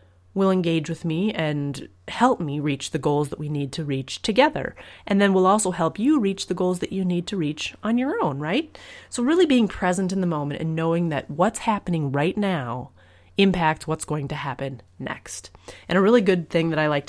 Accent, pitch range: American, 145-195 Hz